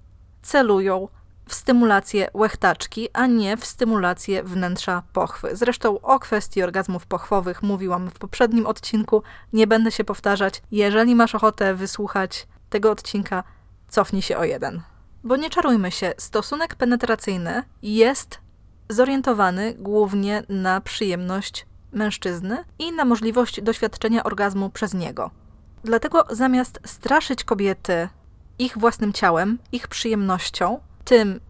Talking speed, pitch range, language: 120 wpm, 195-235 Hz, Polish